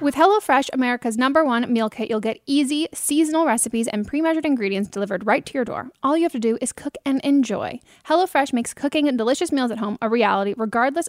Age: 10-29